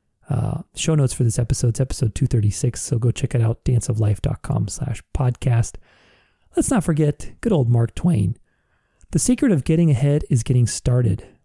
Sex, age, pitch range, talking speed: male, 30-49, 115-145 Hz, 170 wpm